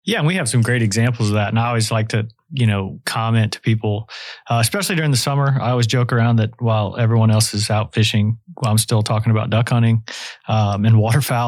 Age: 30-49